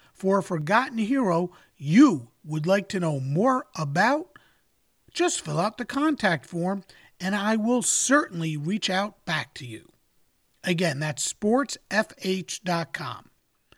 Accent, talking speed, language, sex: American, 125 wpm, English, male